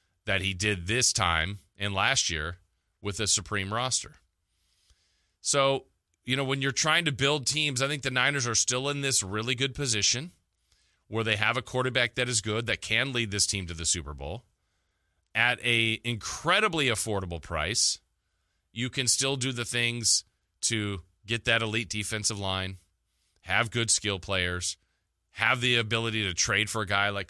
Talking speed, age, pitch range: 175 wpm, 30-49, 90-120 Hz